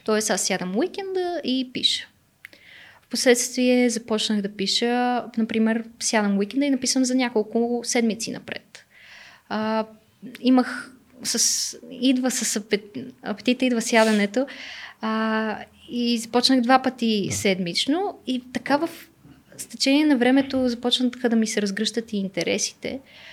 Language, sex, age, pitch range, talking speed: Bulgarian, female, 20-39, 205-255 Hz, 120 wpm